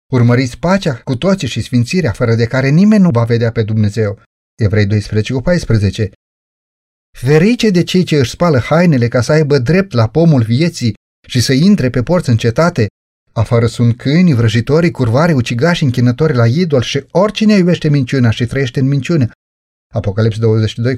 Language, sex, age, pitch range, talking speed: Romanian, male, 30-49, 120-165 Hz, 170 wpm